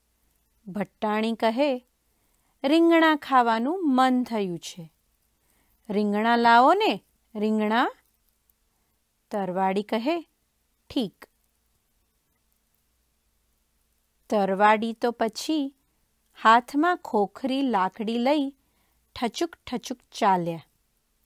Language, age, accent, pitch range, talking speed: English, 40-59, Indian, 190-285 Hz, 70 wpm